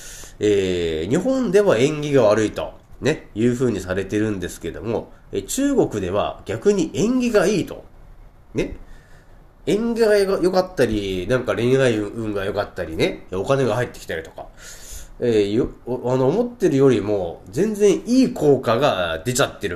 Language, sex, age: Japanese, male, 40-59